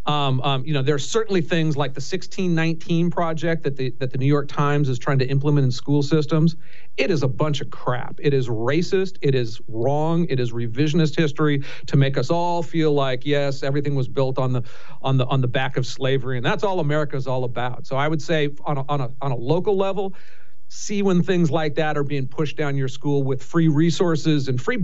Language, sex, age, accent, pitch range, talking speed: English, male, 40-59, American, 140-175 Hz, 230 wpm